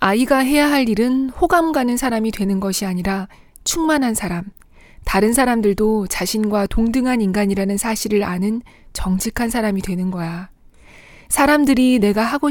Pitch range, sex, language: 190-235 Hz, female, Korean